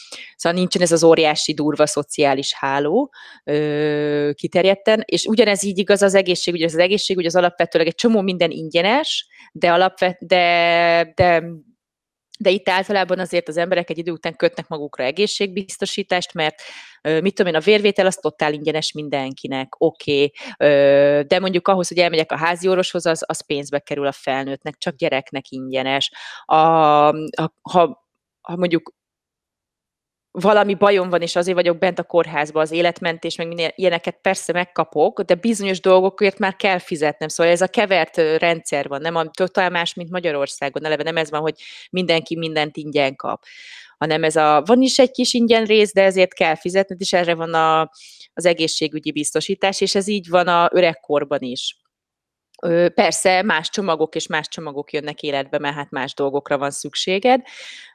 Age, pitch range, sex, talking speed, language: 30-49, 155-190 Hz, female, 160 wpm, Hungarian